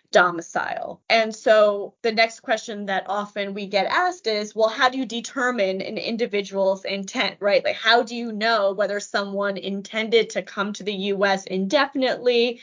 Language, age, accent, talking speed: English, 20-39, American, 165 wpm